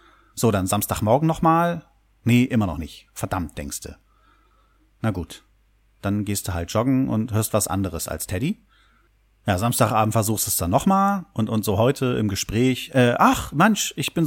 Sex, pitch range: male, 100-125 Hz